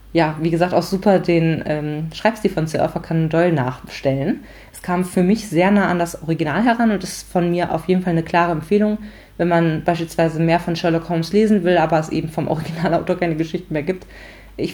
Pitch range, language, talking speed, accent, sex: 165-195 Hz, German, 210 wpm, German, female